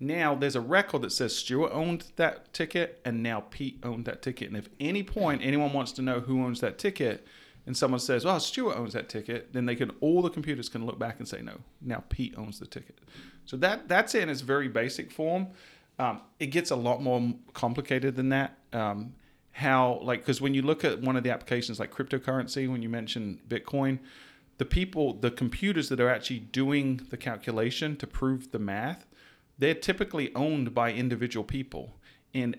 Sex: male